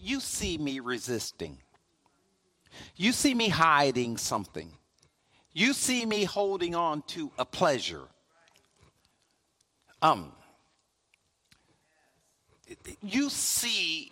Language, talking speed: English, 85 wpm